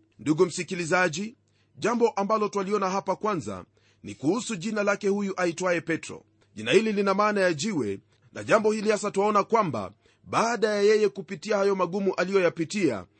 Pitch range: 175-215 Hz